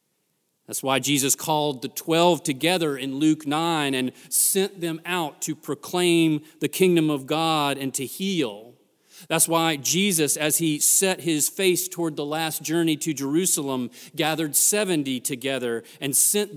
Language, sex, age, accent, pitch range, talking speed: English, male, 40-59, American, 130-160 Hz, 150 wpm